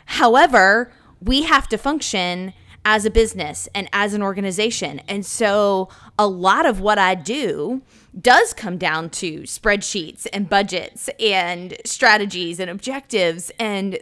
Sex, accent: female, American